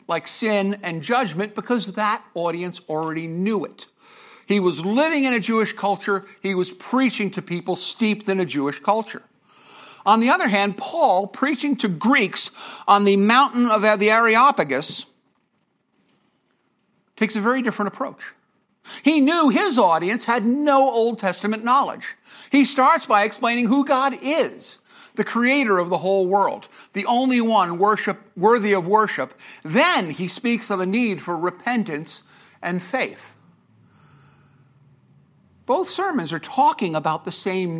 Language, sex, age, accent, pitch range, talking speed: English, male, 50-69, American, 185-240 Hz, 145 wpm